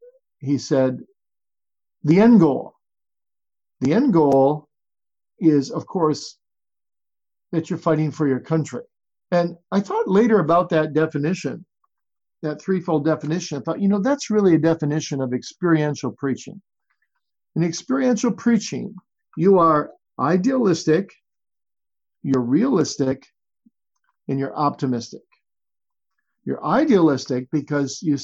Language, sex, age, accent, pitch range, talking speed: English, male, 50-69, American, 145-200 Hz, 115 wpm